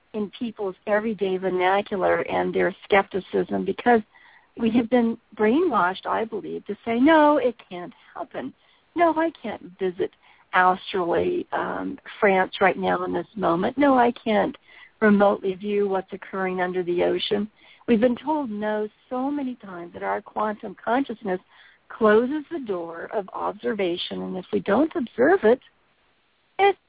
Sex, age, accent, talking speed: female, 50-69, American, 145 wpm